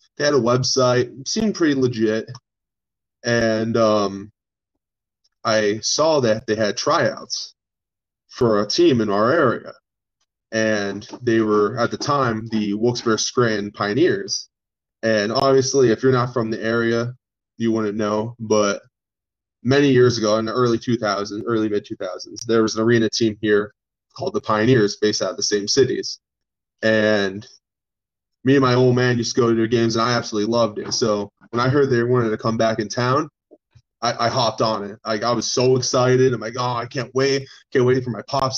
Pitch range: 110-130 Hz